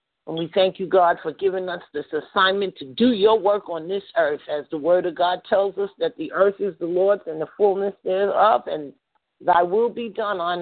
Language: English